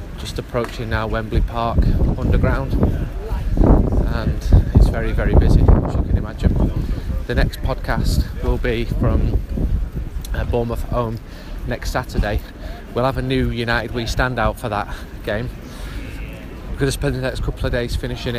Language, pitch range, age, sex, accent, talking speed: English, 90-125 Hz, 30-49, male, British, 145 wpm